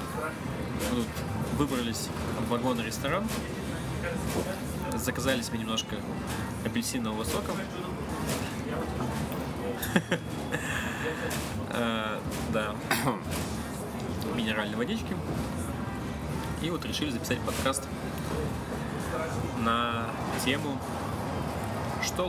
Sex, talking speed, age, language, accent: male, 55 wpm, 20-39, Russian, native